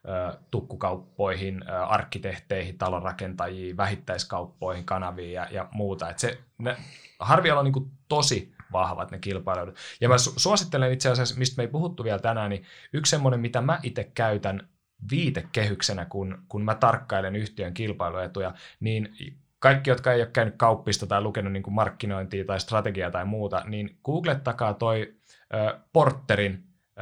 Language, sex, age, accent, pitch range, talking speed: Finnish, male, 30-49, native, 95-125 Hz, 135 wpm